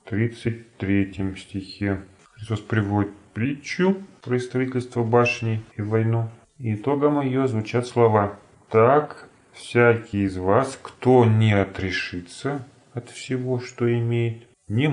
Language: Russian